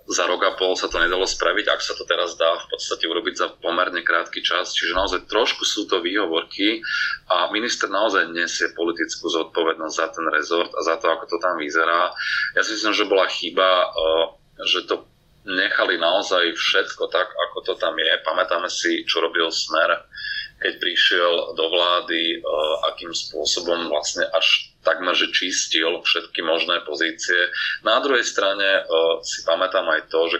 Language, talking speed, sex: Slovak, 170 wpm, male